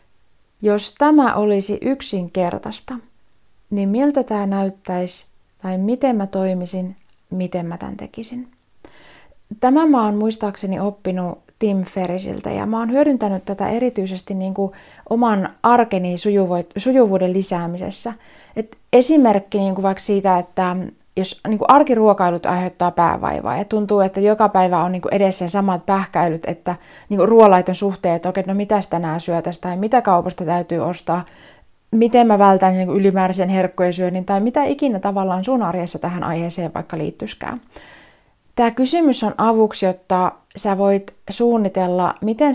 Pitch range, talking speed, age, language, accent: 180-220 Hz, 130 wpm, 30-49, Finnish, native